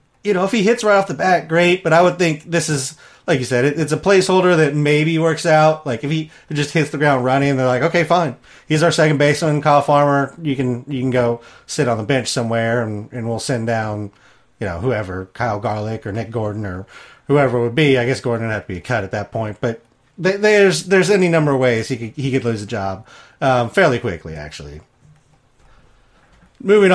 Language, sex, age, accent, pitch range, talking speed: English, male, 30-49, American, 120-160 Hz, 230 wpm